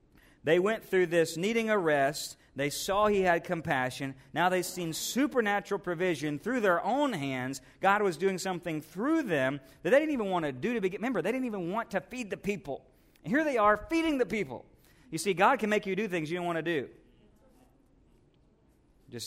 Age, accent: 40-59, American